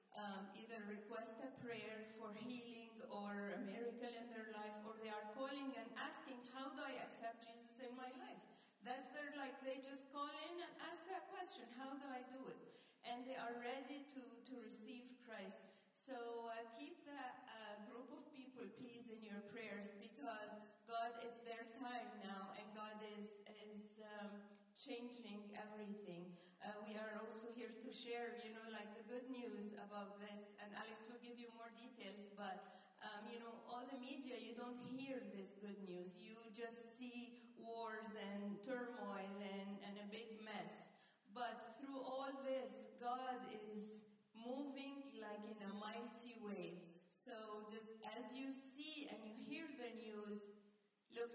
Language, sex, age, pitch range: Japanese, female, 40-59, 210-245 Hz